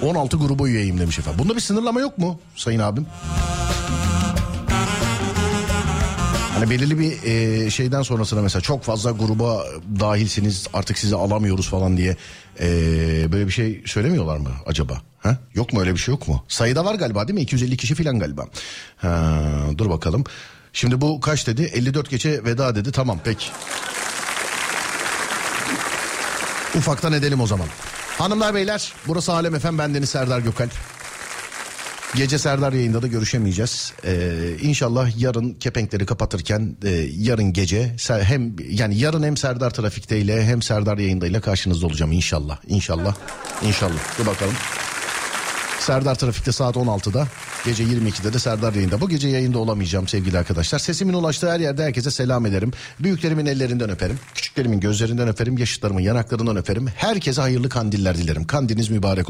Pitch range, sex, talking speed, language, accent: 100-140 Hz, male, 145 wpm, Turkish, native